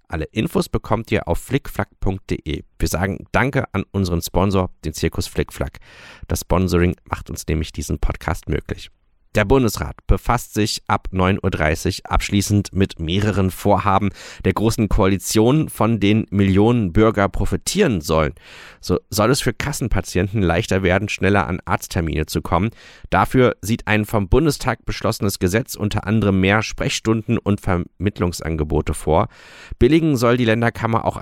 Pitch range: 90-110 Hz